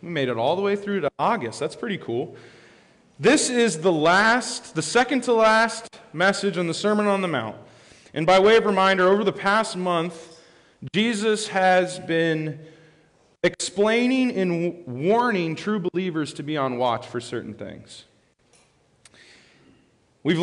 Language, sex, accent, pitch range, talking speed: English, male, American, 150-200 Hz, 145 wpm